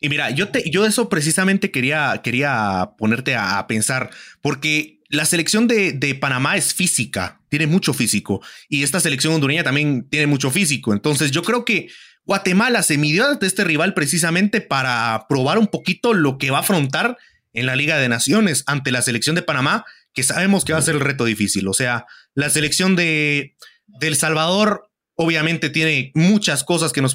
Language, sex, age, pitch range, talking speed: English, male, 30-49, 140-195 Hz, 185 wpm